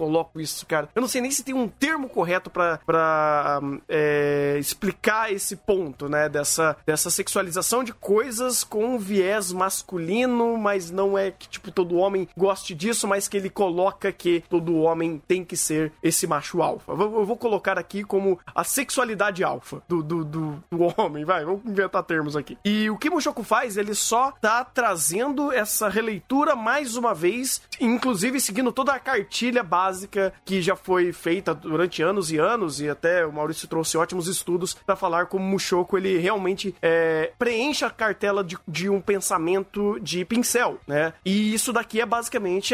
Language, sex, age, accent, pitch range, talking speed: Portuguese, male, 20-39, Brazilian, 170-235 Hz, 175 wpm